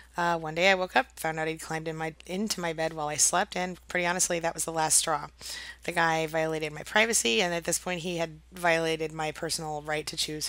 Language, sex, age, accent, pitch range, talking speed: English, female, 30-49, American, 165-195 Hz, 245 wpm